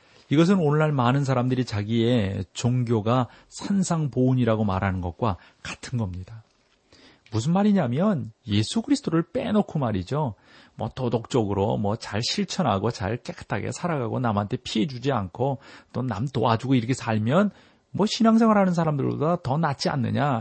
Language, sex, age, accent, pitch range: Korean, male, 40-59, native, 115-150 Hz